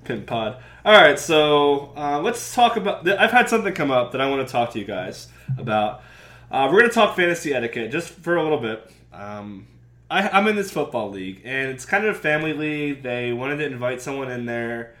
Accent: American